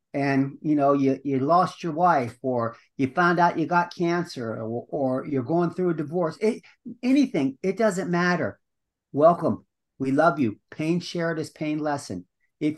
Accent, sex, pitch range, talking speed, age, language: American, male, 140-180 Hz, 175 wpm, 50-69, English